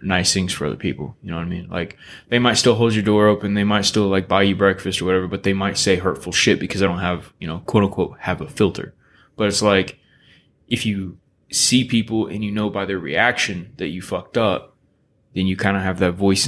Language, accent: English, American